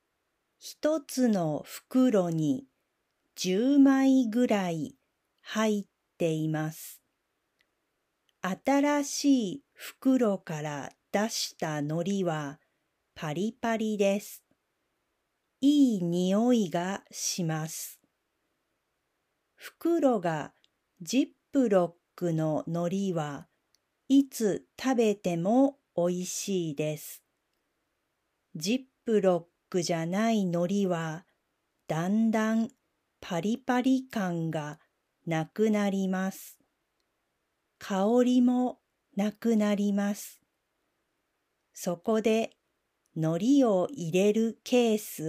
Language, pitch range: Japanese, 175-250 Hz